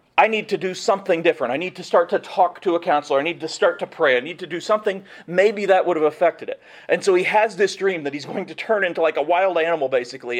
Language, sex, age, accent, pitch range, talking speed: English, male, 40-59, American, 150-205 Hz, 285 wpm